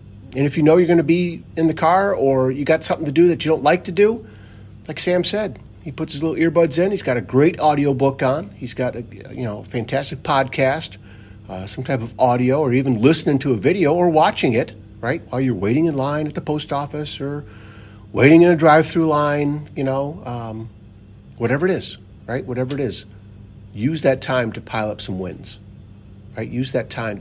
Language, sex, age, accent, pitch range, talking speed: English, male, 50-69, American, 100-135 Hz, 215 wpm